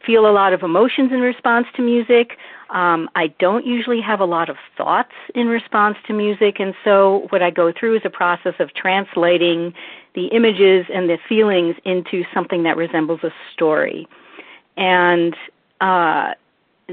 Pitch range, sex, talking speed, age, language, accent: 165-210 Hz, female, 165 wpm, 50-69, English, American